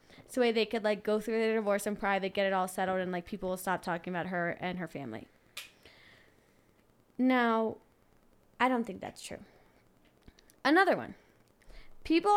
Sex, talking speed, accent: female, 170 wpm, American